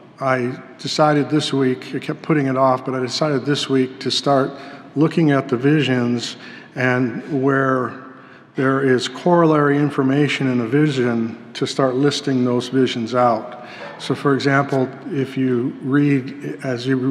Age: 50-69